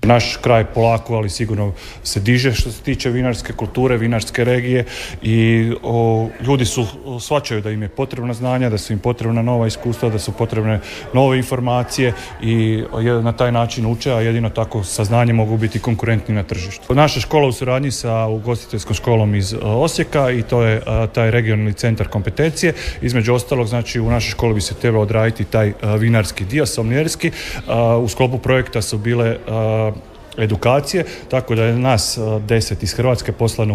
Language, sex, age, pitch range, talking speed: Croatian, male, 30-49, 110-130 Hz, 175 wpm